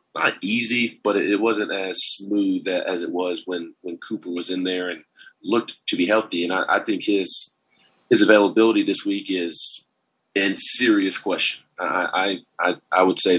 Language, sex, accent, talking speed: English, male, American, 175 wpm